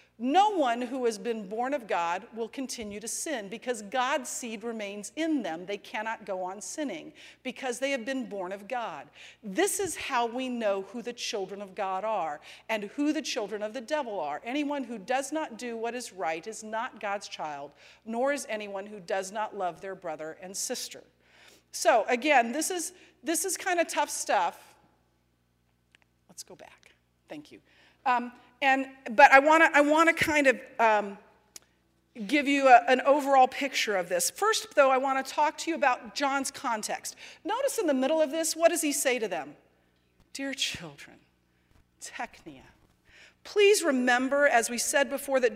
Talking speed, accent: 180 wpm, American